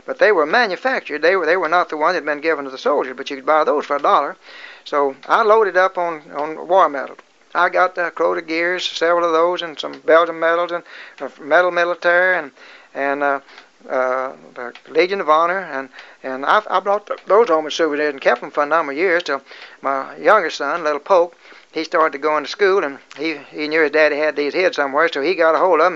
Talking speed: 245 wpm